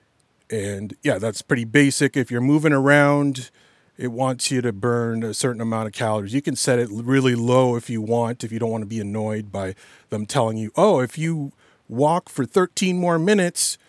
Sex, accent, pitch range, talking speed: male, American, 115-145 Hz, 205 wpm